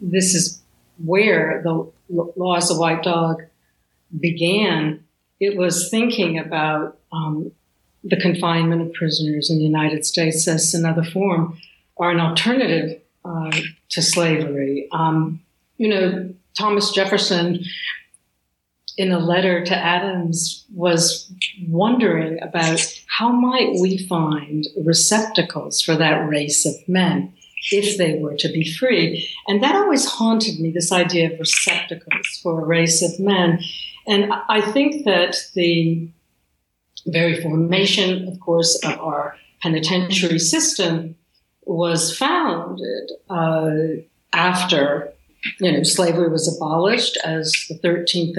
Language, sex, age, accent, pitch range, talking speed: English, female, 60-79, American, 160-185 Hz, 125 wpm